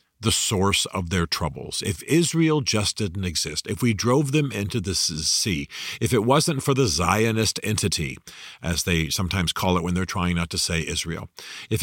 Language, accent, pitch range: English, American, 90-125 Hz